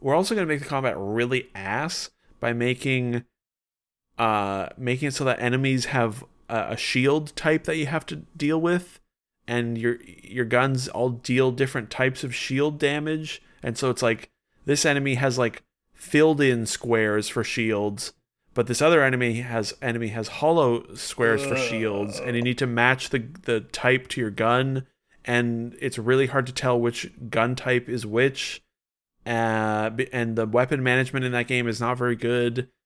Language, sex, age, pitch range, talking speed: English, male, 30-49, 115-135 Hz, 175 wpm